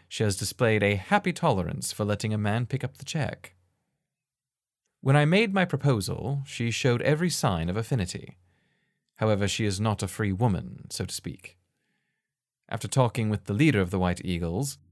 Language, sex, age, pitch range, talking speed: English, male, 30-49, 95-130 Hz, 175 wpm